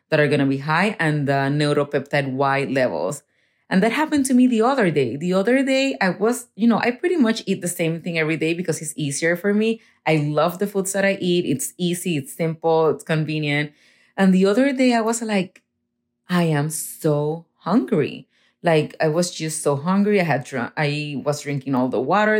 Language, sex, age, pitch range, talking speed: English, female, 30-49, 150-195 Hz, 210 wpm